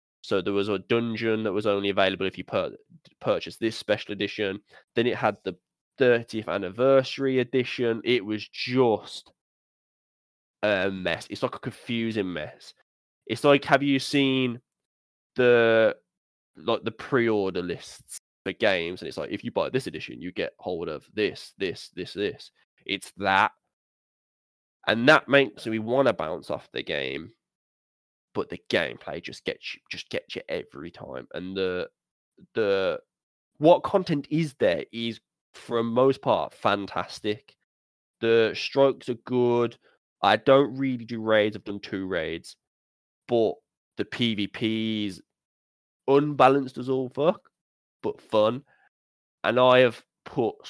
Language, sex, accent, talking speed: English, male, British, 145 wpm